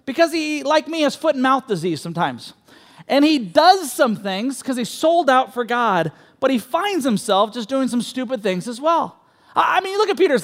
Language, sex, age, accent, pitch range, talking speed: English, male, 30-49, American, 235-315 Hz, 220 wpm